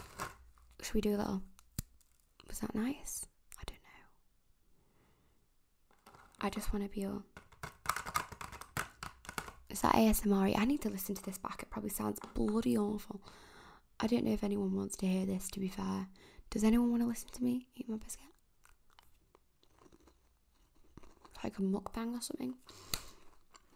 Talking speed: 150 wpm